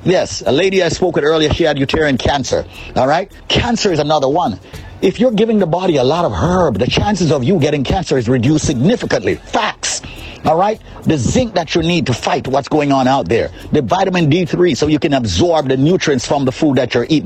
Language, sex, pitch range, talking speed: English, male, 110-175 Hz, 230 wpm